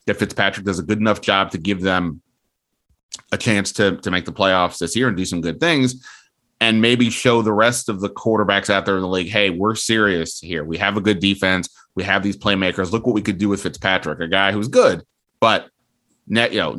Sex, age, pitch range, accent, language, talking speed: male, 30-49, 90-105 Hz, American, Hebrew, 230 wpm